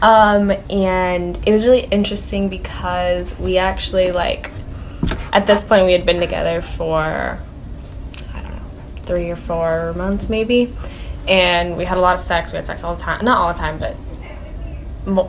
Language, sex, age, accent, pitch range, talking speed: English, female, 10-29, American, 155-195 Hz, 175 wpm